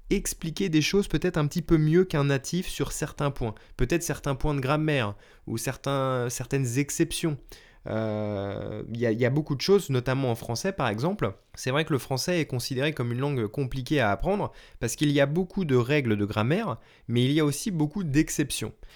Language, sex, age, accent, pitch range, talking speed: French, male, 20-39, French, 125-170 Hz, 195 wpm